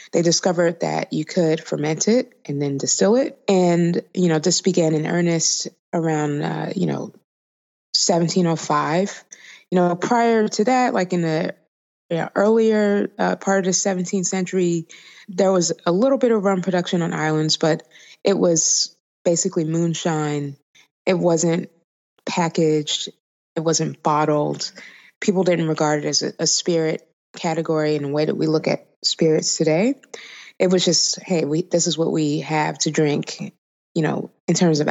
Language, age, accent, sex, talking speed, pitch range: English, 20-39, American, female, 160 wpm, 155-185 Hz